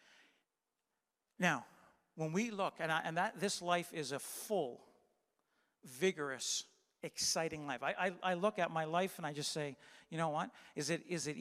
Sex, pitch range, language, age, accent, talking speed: male, 170-225 Hz, English, 50-69, American, 180 wpm